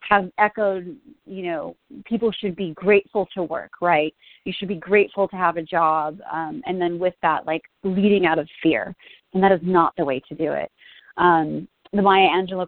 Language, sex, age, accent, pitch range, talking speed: English, female, 30-49, American, 175-210 Hz, 200 wpm